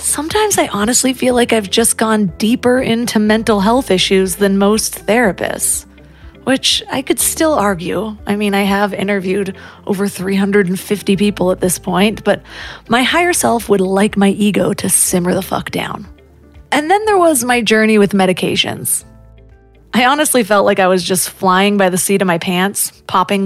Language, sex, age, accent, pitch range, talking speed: English, female, 30-49, American, 190-230 Hz, 175 wpm